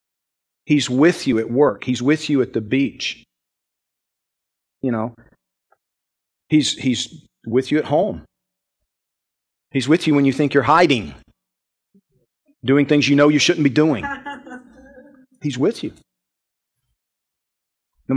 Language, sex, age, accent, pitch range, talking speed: English, male, 40-59, American, 115-155 Hz, 130 wpm